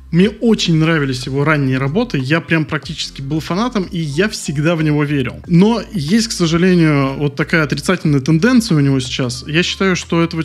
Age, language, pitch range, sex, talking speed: 20-39, Russian, 145-190 Hz, male, 185 wpm